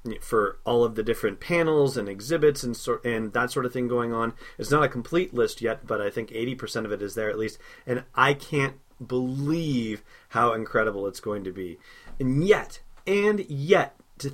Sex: male